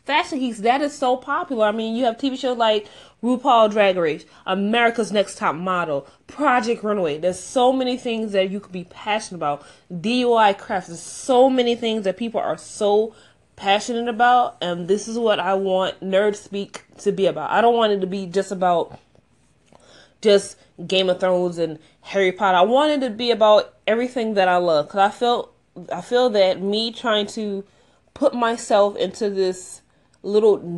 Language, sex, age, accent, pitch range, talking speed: English, female, 20-39, American, 185-225 Hz, 180 wpm